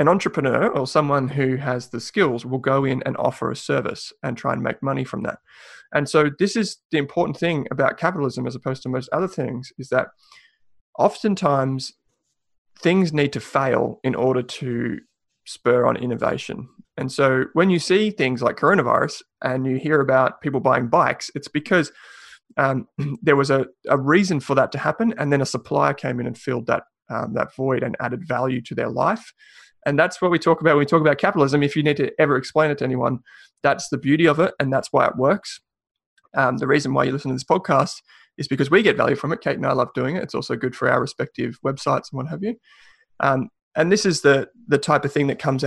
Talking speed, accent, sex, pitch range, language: 220 wpm, Australian, male, 130-160 Hz, English